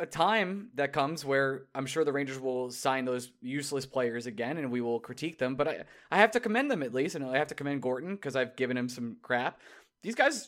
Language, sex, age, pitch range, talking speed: English, male, 20-39, 130-195 Hz, 245 wpm